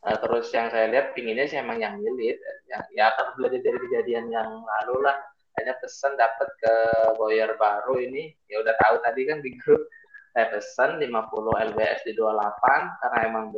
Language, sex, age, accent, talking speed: Indonesian, male, 20-39, native, 175 wpm